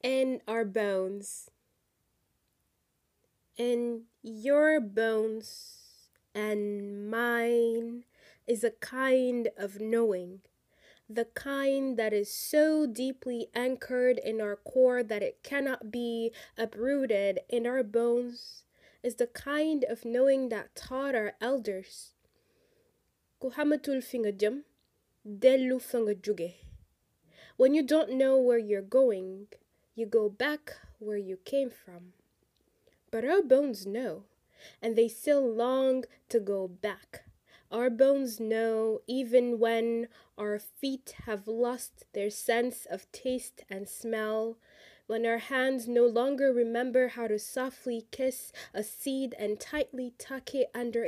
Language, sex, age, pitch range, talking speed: English, female, 20-39, 220-260 Hz, 115 wpm